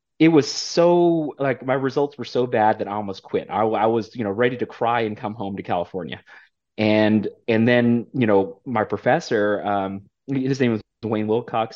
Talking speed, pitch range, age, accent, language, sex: 200 wpm, 105-155 Hz, 30-49, American, English, male